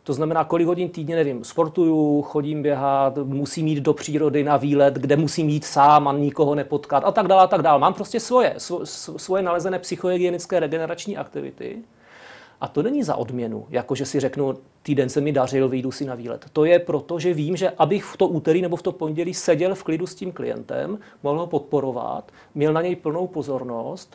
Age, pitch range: 40-59, 140-170 Hz